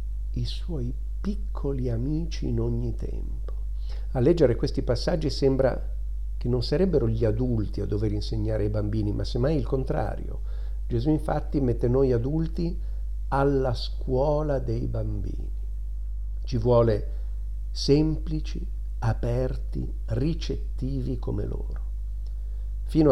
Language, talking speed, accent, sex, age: Italian, 110 wpm, native, male, 50-69